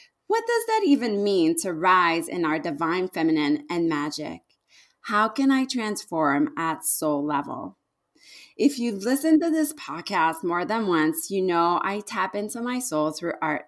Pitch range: 175-240 Hz